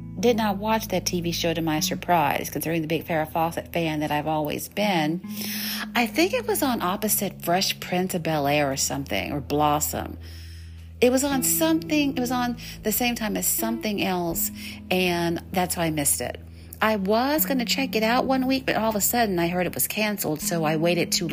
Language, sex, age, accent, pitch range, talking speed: English, female, 50-69, American, 150-215 Hz, 210 wpm